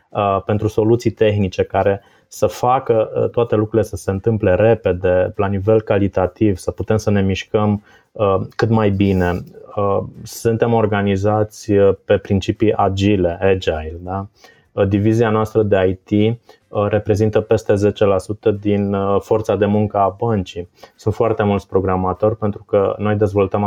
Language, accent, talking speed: Romanian, native, 125 wpm